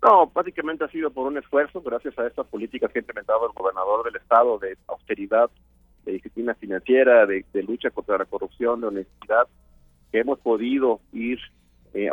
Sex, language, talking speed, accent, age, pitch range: male, Spanish, 180 wpm, Mexican, 30-49, 110-155 Hz